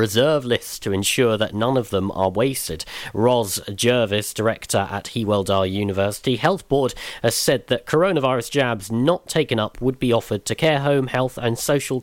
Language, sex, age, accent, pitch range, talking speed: English, male, 40-59, British, 110-140 Hz, 175 wpm